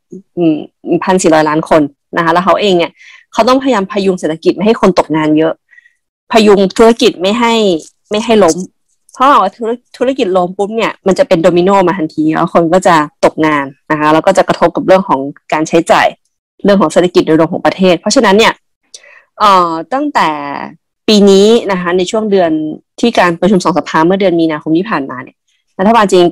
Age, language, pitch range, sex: 20-39, Thai, 165-200 Hz, female